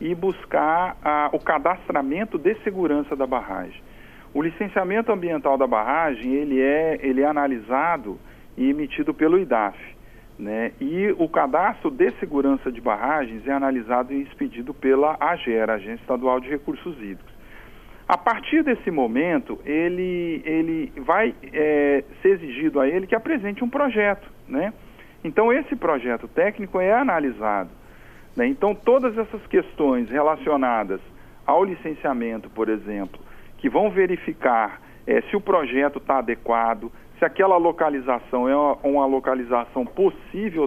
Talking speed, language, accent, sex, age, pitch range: 125 wpm, Portuguese, Brazilian, male, 50-69, 125-205 Hz